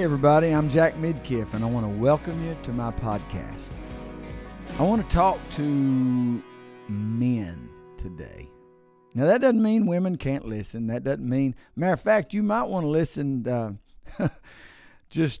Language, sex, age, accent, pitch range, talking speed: English, male, 50-69, American, 105-145 Hz, 155 wpm